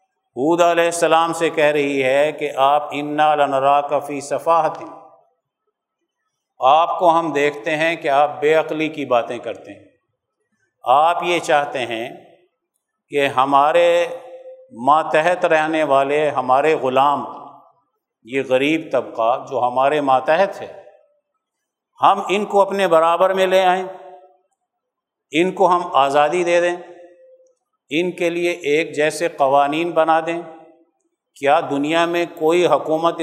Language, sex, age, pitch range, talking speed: Urdu, male, 50-69, 145-175 Hz, 125 wpm